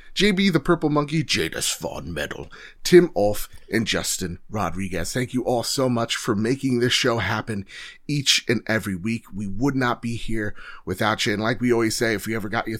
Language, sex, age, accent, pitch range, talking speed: English, male, 30-49, American, 105-140 Hz, 200 wpm